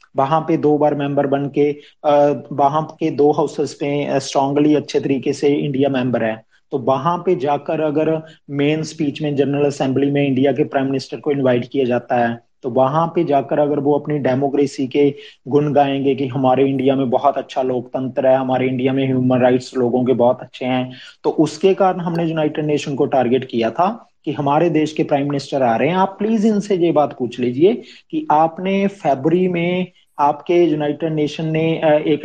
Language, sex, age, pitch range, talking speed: Tamil, male, 30-49, 135-155 Hz, 35 wpm